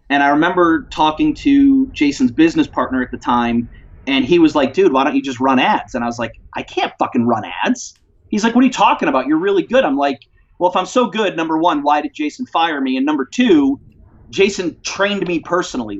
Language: English